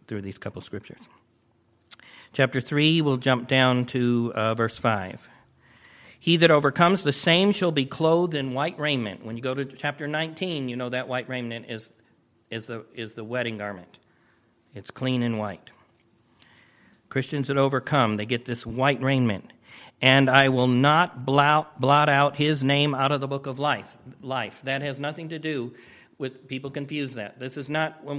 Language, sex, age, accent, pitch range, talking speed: English, male, 50-69, American, 120-145 Hz, 175 wpm